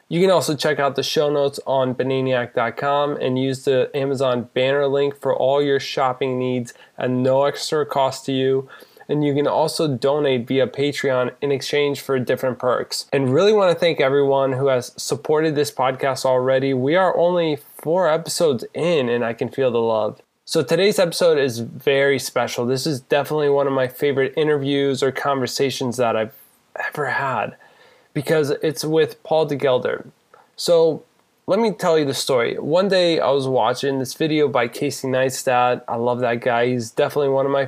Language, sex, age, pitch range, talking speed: English, male, 20-39, 130-155 Hz, 185 wpm